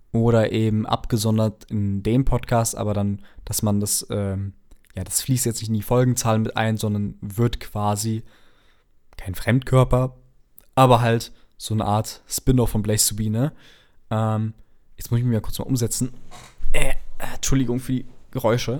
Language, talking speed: German, 155 wpm